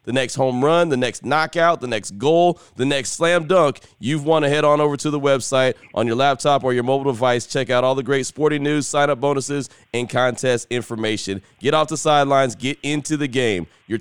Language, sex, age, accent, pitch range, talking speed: English, male, 30-49, American, 125-155 Hz, 225 wpm